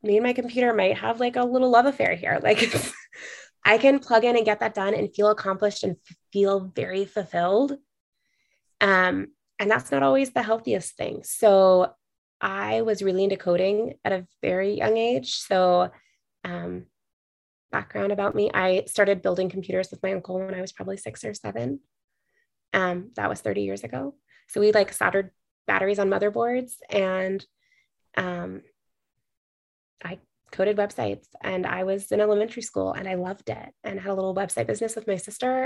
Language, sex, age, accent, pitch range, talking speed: English, female, 20-39, American, 180-215 Hz, 175 wpm